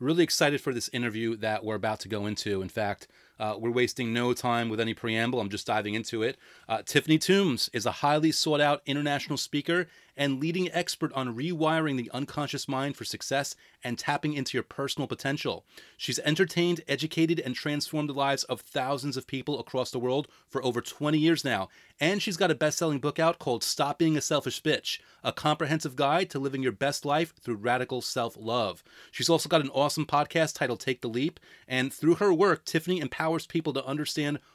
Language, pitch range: English, 130-160 Hz